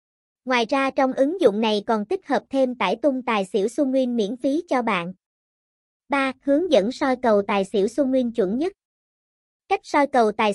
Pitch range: 220-280 Hz